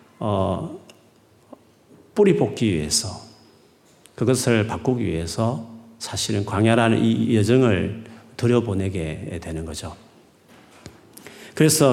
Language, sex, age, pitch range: Korean, male, 40-59, 105-140 Hz